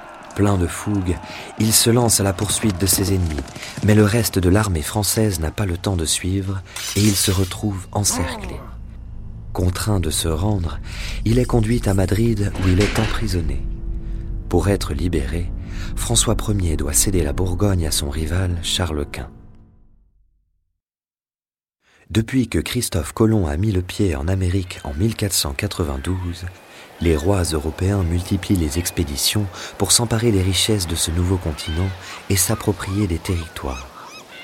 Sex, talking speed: male, 150 wpm